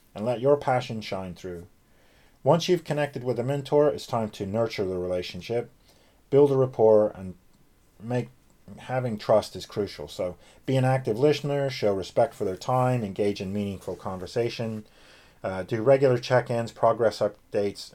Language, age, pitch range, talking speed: English, 40-59, 100-130 Hz, 155 wpm